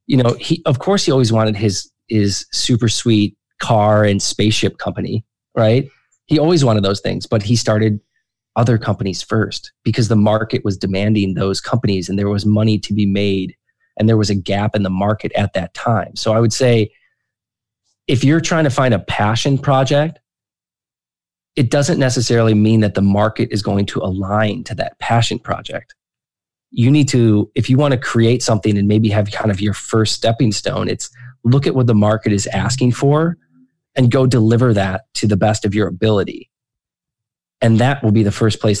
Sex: male